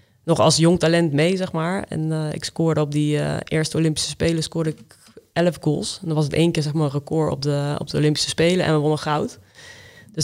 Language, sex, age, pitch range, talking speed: Dutch, female, 20-39, 150-165 Hz, 240 wpm